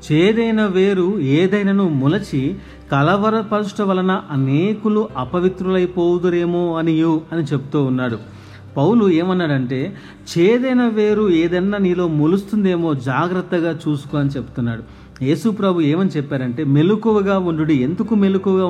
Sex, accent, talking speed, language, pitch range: male, native, 100 wpm, Telugu, 140-195 Hz